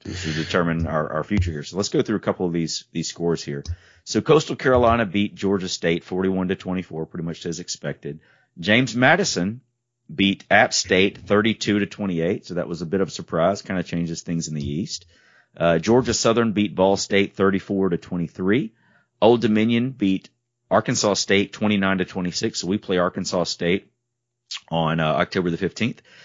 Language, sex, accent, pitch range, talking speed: English, male, American, 90-120 Hz, 185 wpm